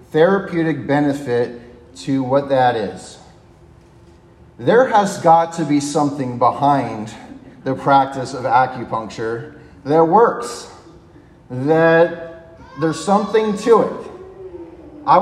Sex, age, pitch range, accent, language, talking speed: male, 40-59, 135-190 Hz, American, English, 100 wpm